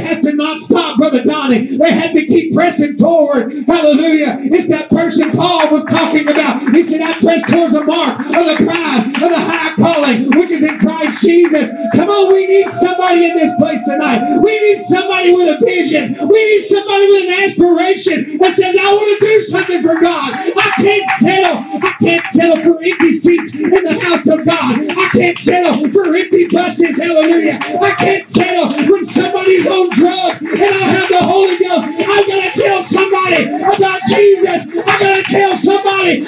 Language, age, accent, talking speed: English, 40-59, American, 185 wpm